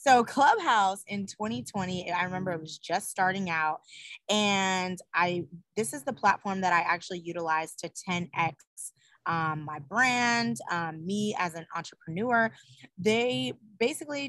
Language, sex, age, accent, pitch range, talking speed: English, female, 20-39, American, 170-215 Hz, 140 wpm